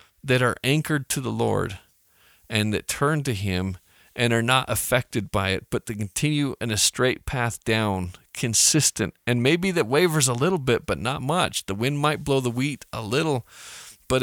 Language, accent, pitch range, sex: English, American, 105-130 Hz, male